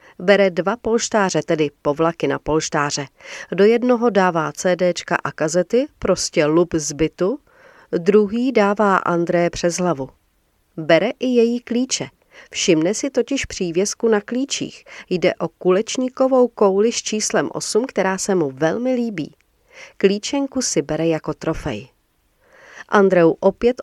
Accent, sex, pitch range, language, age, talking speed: native, female, 165-225 Hz, Czech, 40-59, 125 wpm